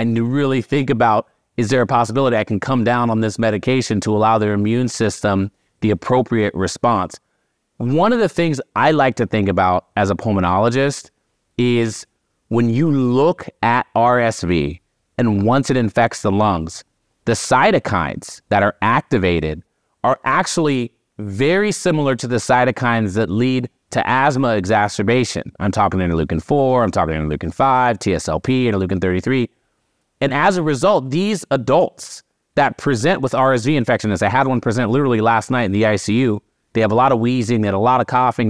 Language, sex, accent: English, male, American